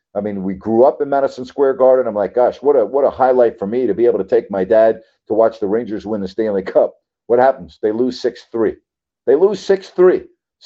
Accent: American